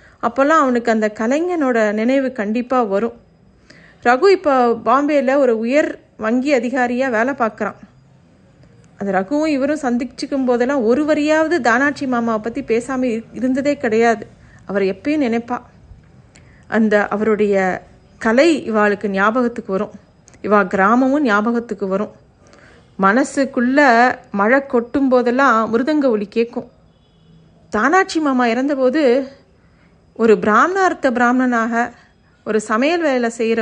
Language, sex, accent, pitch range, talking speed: Tamil, female, native, 220-275 Hz, 100 wpm